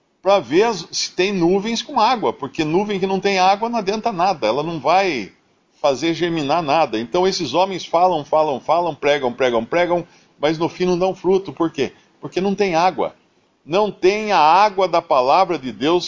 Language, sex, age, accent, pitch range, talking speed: Portuguese, male, 50-69, Brazilian, 135-195 Hz, 190 wpm